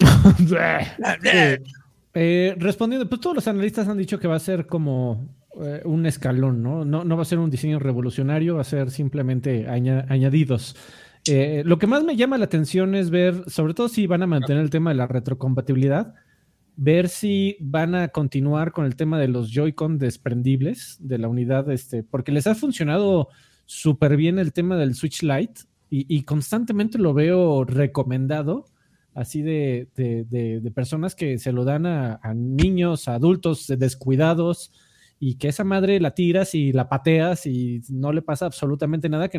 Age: 40-59